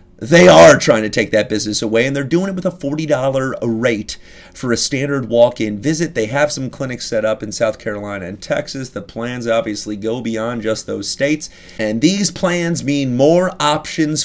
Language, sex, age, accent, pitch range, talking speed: English, male, 30-49, American, 115-170 Hz, 195 wpm